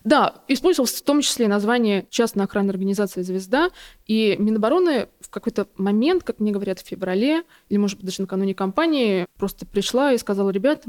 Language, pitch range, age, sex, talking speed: Russian, 195-245 Hz, 20-39, female, 170 wpm